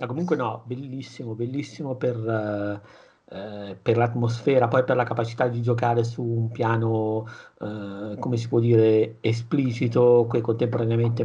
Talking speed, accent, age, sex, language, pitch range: 140 wpm, native, 50-69, male, Italian, 115-130 Hz